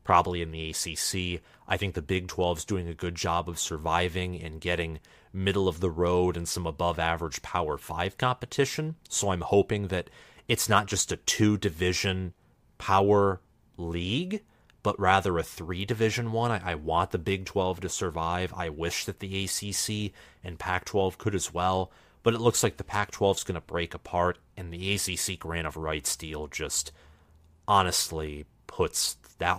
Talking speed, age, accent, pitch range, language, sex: 165 wpm, 30-49, American, 85-100 Hz, English, male